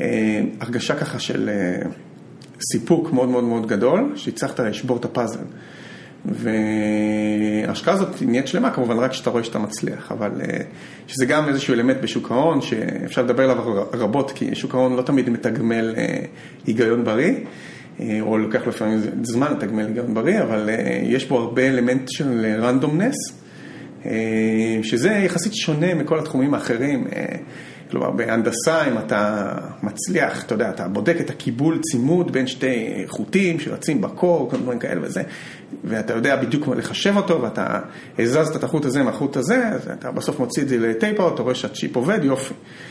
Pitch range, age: 110-155 Hz, 30-49